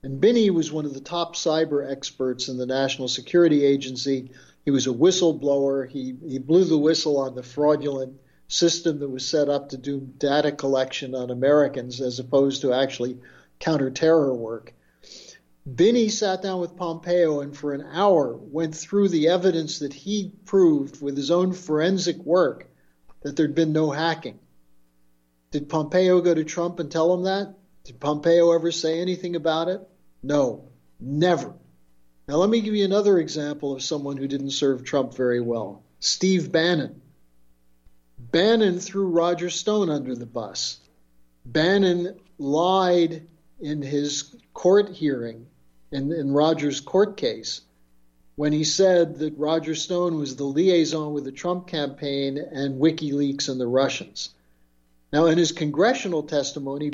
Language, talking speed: English, 155 wpm